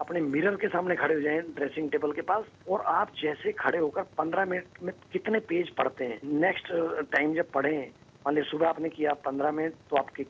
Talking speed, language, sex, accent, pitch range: 215 wpm, English, male, Indian, 150-185 Hz